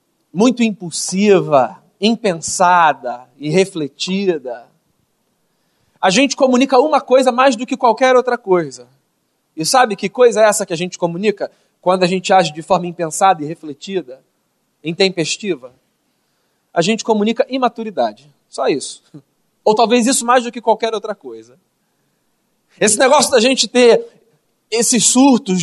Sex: male